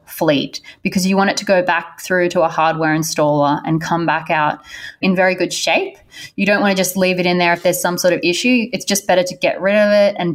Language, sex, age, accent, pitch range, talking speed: English, female, 20-39, Australian, 165-200 Hz, 260 wpm